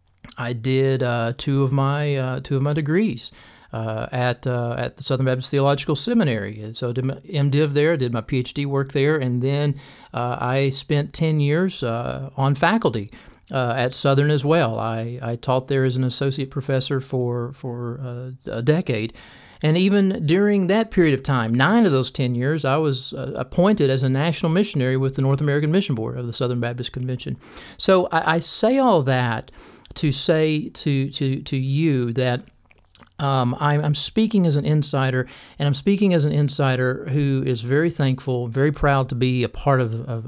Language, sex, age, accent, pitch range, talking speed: English, male, 40-59, American, 125-150 Hz, 190 wpm